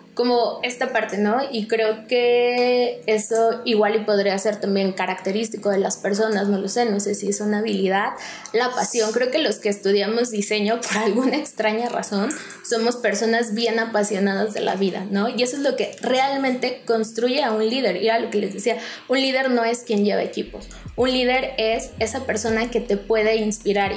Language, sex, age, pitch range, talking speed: Spanish, female, 20-39, 210-235 Hz, 195 wpm